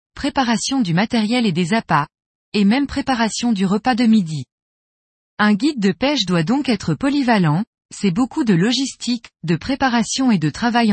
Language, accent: French, French